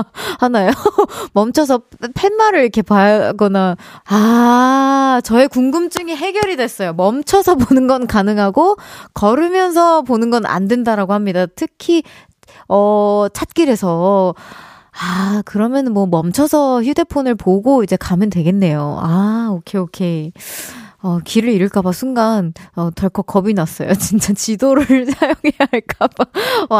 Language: Korean